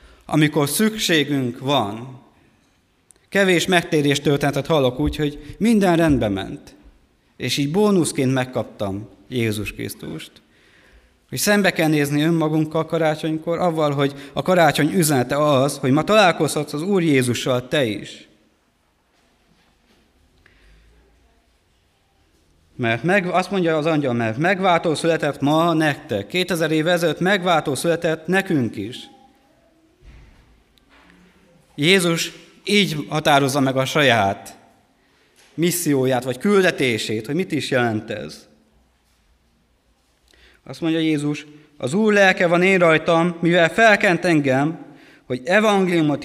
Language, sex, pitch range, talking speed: Hungarian, male, 125-175 Hz, 110 wpm